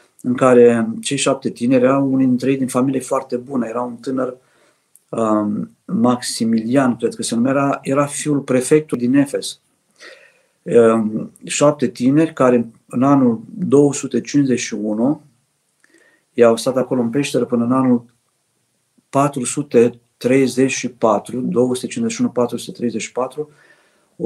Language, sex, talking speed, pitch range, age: Romanian, male, 100 wpm, 120-150 Hz, 50-69